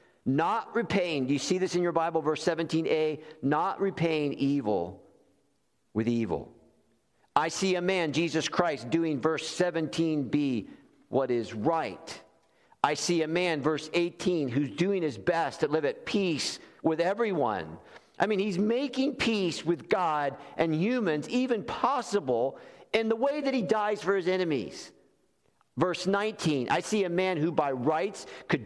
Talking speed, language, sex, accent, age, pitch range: 155 wpm, English, male, American, 50-69, 120-180 Hz